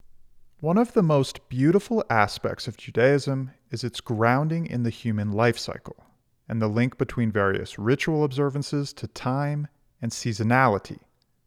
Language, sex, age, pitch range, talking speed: English, male, 30-49, 110-140 Hz, 140 wpm